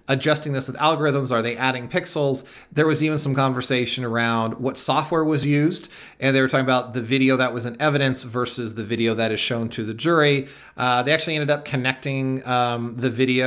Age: 30-49